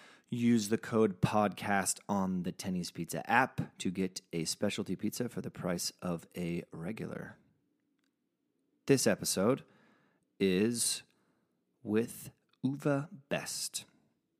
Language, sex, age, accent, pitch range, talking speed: English, male, 30-49, American, 90-105 Hz, 110 wpm